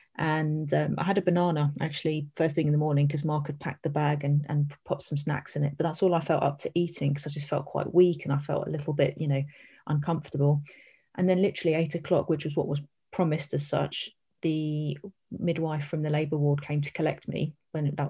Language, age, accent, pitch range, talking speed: English, 30-49, British, 145-170 Hz, 240 wpm